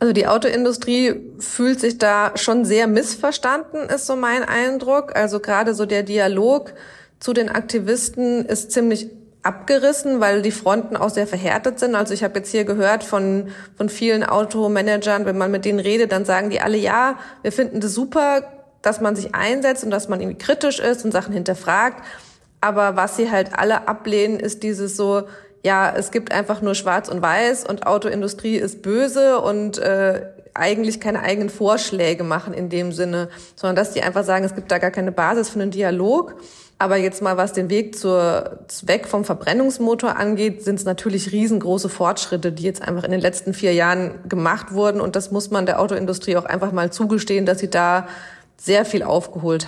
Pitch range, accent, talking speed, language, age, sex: 190-225 Hz, German, 185 wpm, German, 30-49, female